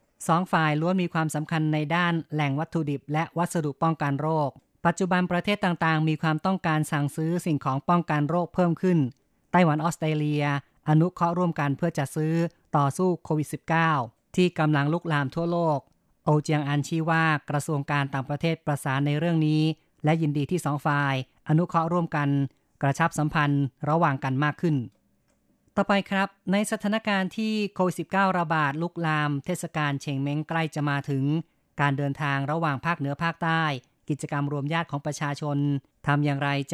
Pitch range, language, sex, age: 145-165 Hz, Thai, female, 20-39